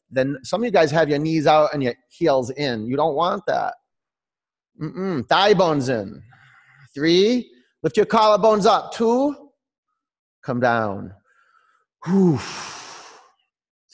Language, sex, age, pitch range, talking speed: English, male, 30-49, 130-220 Hz, 135 wpm